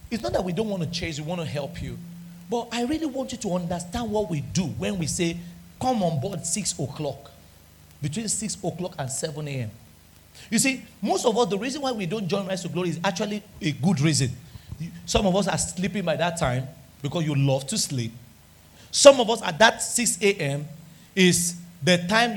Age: 40-59